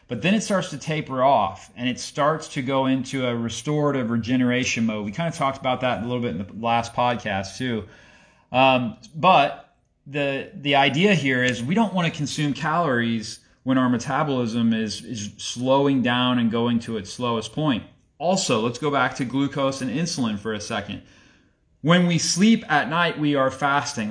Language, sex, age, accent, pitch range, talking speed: English, male, 30-49, American, 120-150 Hz, 190 wpm